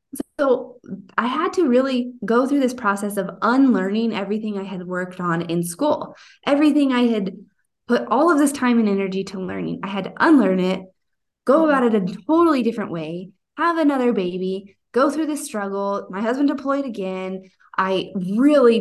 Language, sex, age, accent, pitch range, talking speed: English, female, 20-39, American, 195-250 Hz, 175 wpm